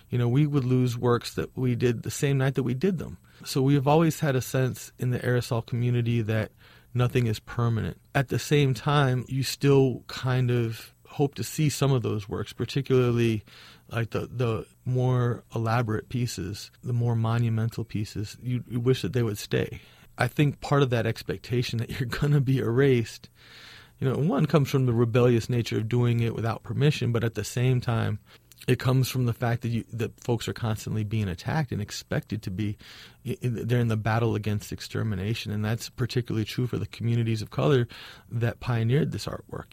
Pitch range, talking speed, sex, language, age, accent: 110-125 Hz, 200 wpm, male, English, 30-49, American